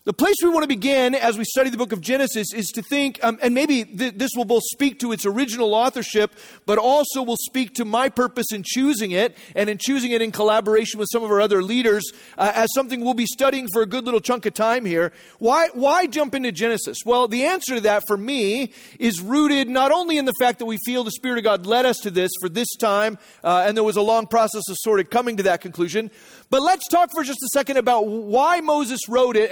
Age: 40-59